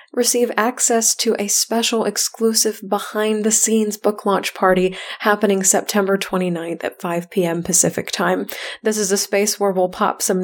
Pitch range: 190-225 Hz